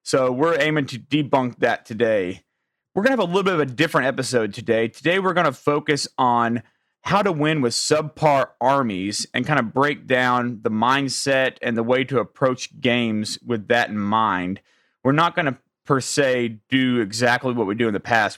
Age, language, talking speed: 30-49, English, 200 wpm